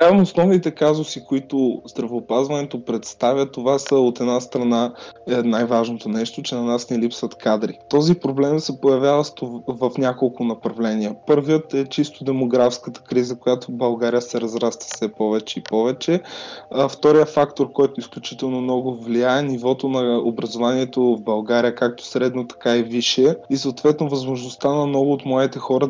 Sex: male